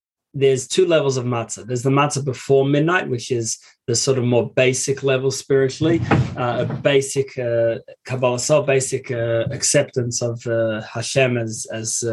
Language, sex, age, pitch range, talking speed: English, male, 20-39, 120-140 Hz, 155 wpm